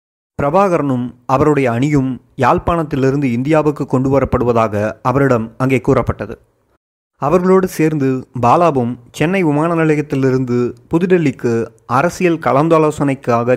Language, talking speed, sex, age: Tamil, 80 wpm, male, 30-49